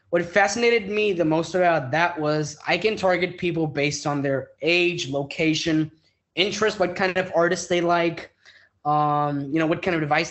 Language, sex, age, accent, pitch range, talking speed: English, male, 20-39, American, 145-185 Hz, 180 wpm